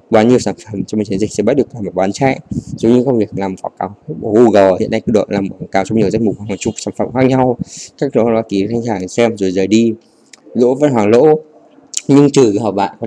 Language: Vietnamese